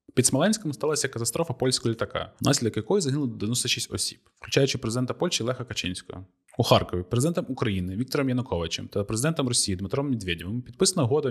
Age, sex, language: 20-39, male, Ukrainian